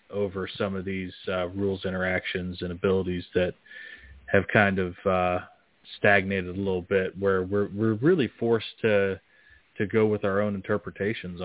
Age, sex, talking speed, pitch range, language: 30-49, male, 155 wpm, 95-115 Hz, English